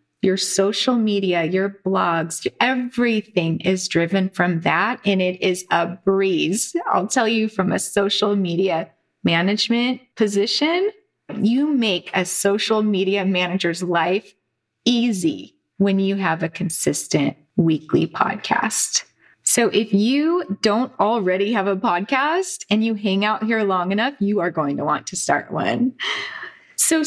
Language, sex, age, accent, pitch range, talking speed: English, female, 30-49, American, 180-230 Hz, 140 wpm